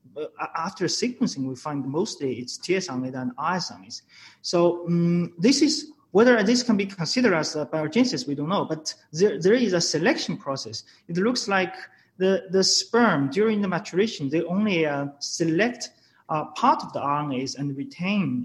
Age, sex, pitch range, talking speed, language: 30-49, male, 145-200 Hz, 165 wpm, English